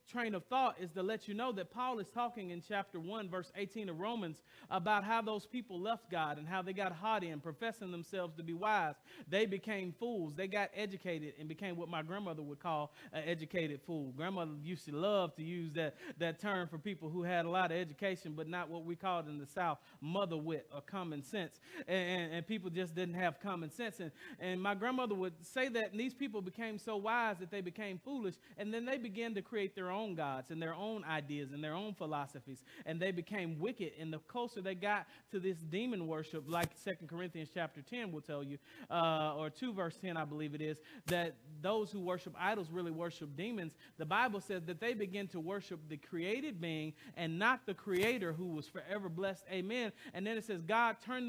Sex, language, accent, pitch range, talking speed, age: male, English, American, 165-215 Hz, 220 wpm, 40-59